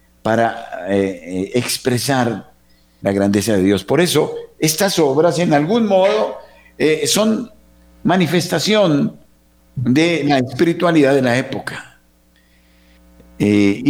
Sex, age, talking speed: male, 50-69, 110 wpm